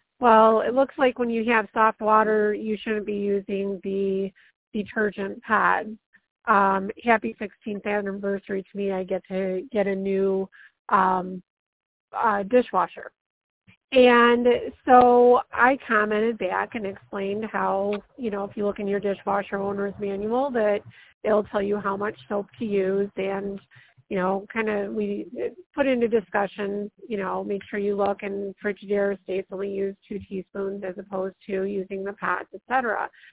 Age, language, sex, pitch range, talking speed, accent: 30-49, English, female, 195-220 Hz, 160 wpm, American